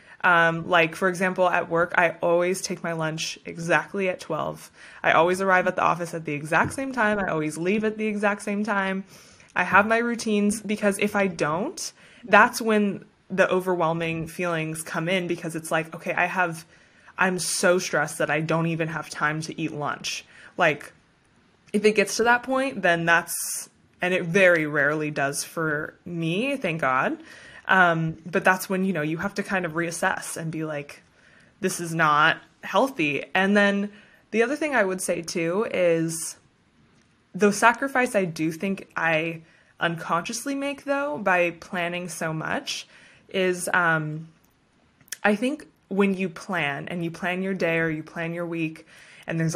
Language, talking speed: English, 175 wpm